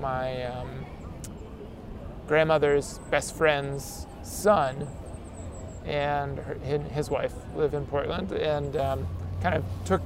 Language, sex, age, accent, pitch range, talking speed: English, male, 20-39, American, 135-170 Hz, 100 wpm